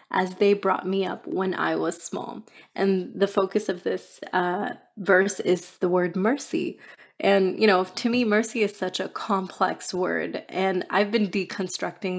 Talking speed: 170 wpm